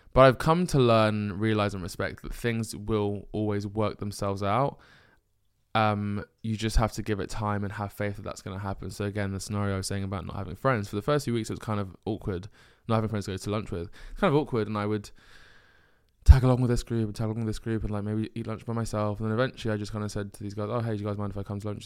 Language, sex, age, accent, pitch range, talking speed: English, male, 20-39, British, 100-115 Hz, 290 wpm